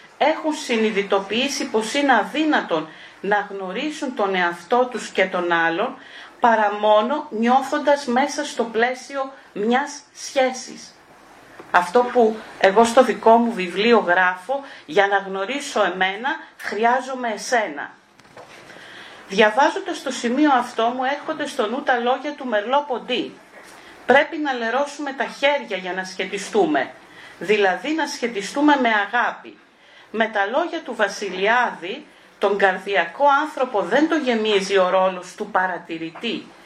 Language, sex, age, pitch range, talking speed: Greek, female, 40-59, 200-275 Hz, 125 wpm